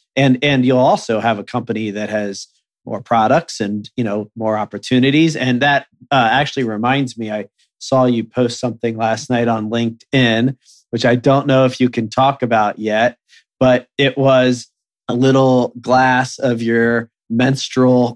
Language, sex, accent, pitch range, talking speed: English, male, American, 115-130 Hz, 165 wpm